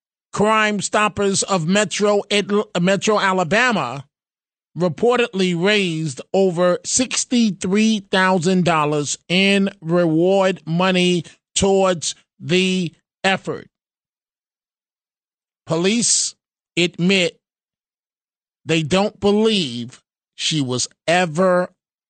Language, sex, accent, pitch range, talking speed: English, male, American, 170-200 Hz, 65 wpm